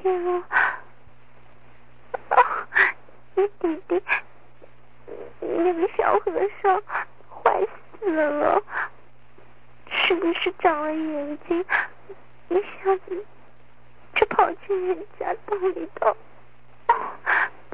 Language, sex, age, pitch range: Chinese, female, 40-59, 325-390 Hz